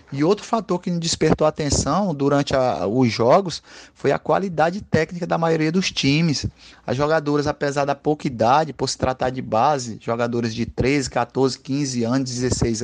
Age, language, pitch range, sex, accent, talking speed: 30-49, Portuguese, 130-160 Hz, male, Brazilian, 165 wpm